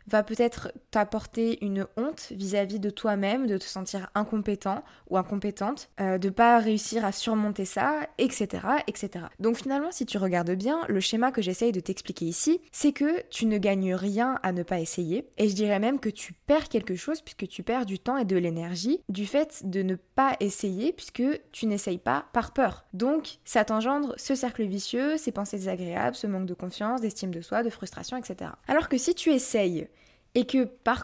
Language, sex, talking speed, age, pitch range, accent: French, female, 195 wpm, 20-39, 195-255 Hz, French